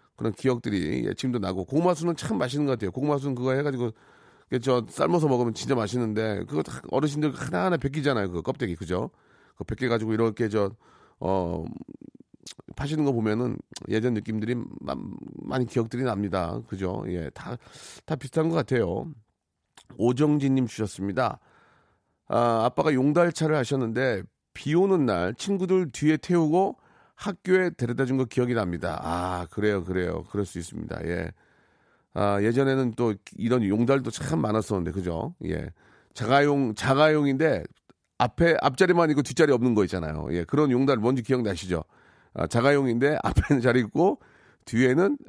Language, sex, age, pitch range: Korean, male, 40-59, 100-140 Hz